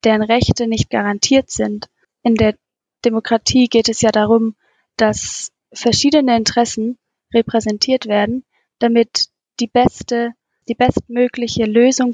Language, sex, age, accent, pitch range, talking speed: German, female, 20-39, German, 225-245 Hz, 115 wpm